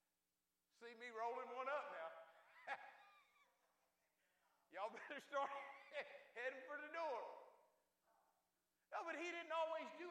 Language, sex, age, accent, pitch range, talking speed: English, male, 50-69, American, 255-315 Hz, 115 wpm